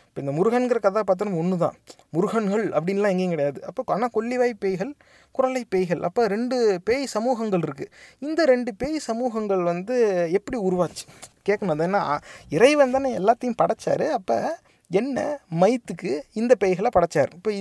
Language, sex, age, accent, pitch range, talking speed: Tamil, male, 30-49, native, 180-230 Hz, 135 wpm